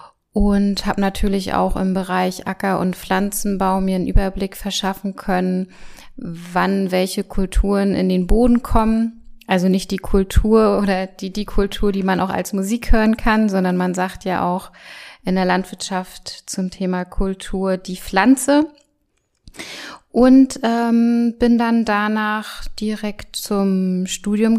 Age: 20-39